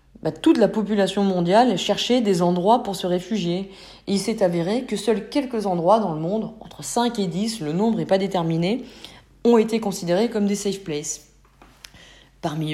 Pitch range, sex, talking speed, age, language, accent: 170-220 Hz, female, 180 wpm, 40-59, French, French